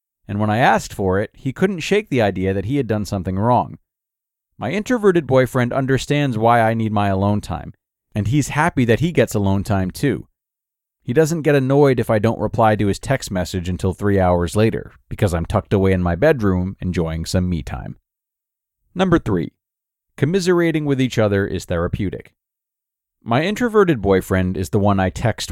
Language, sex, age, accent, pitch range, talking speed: English, male, 30-49, American, 95-140 Hz, 185 wpm